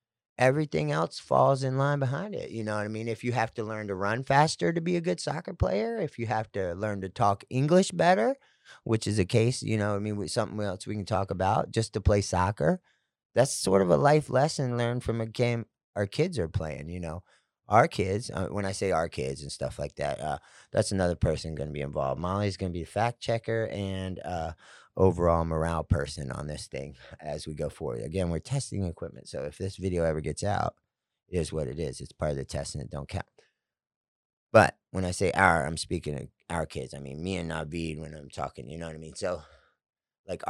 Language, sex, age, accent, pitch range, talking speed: English, male, 30-49, American, 80-115 Hz, 235 wpm